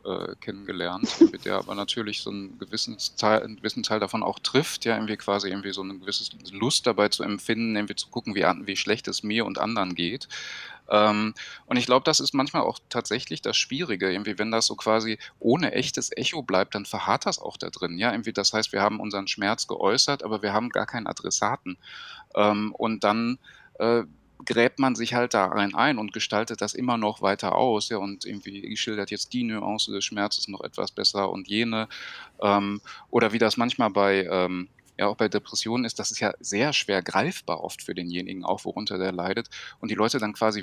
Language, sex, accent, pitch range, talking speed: German, male, German, 100-115 Hz, 200 wpm